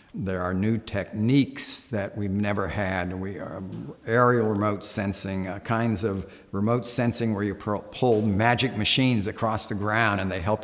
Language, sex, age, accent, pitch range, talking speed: English, male, 50-69, American, 95-115 Hz, 165 wpm